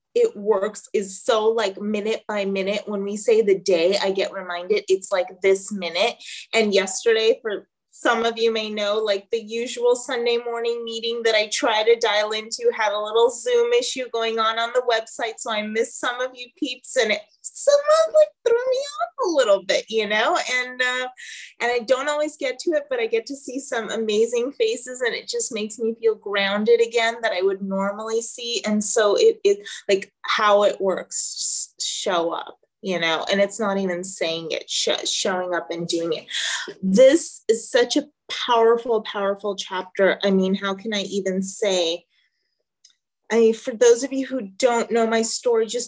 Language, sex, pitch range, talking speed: English, female, 200-255 Hz, 190 wpm